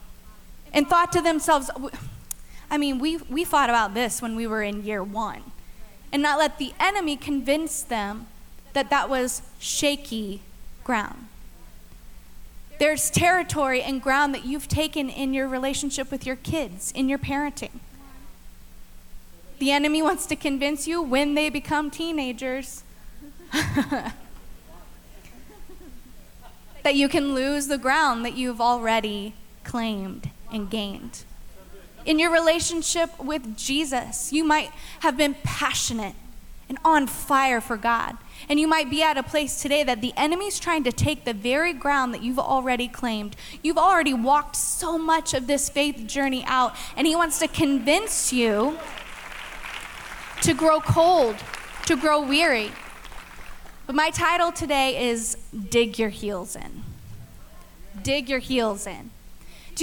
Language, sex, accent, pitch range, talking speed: English, female, American, 235-305 Hz, 140 wpm